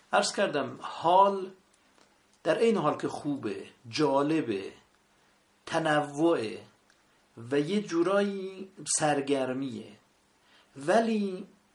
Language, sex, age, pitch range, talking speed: Persian, male, 50-69, 130-180 Hz, 75 wpm